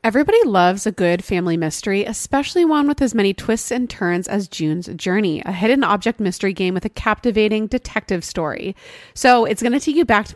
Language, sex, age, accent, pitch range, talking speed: English, female, 30-49, American, 185-235 Hz, 205 wpm